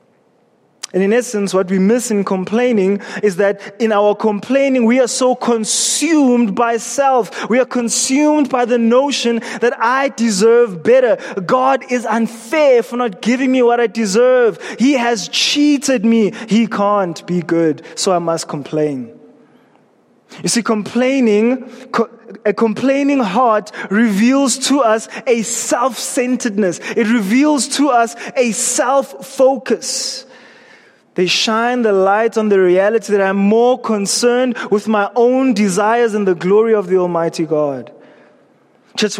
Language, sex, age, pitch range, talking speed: English, male, 20-39, 205-255 Hz, 140 wpm